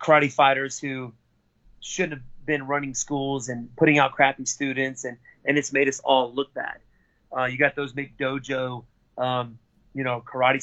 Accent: American